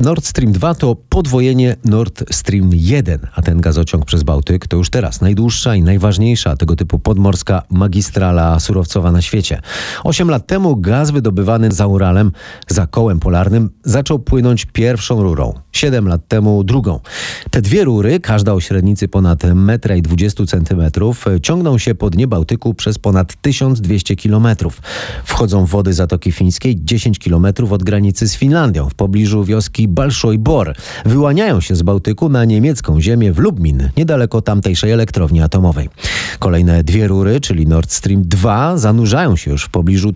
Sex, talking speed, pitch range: male, 150 wpm, 90-120 Hz